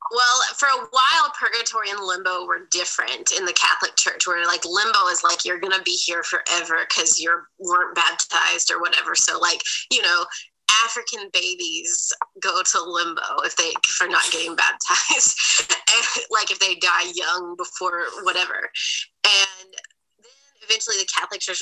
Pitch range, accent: 180-270 Hz, American